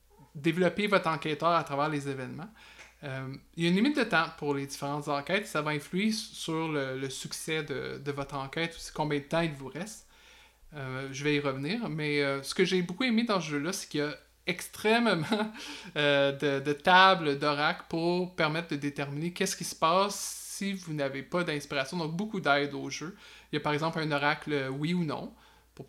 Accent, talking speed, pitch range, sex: Canadian, 210 wpm, 140-175 Hz, male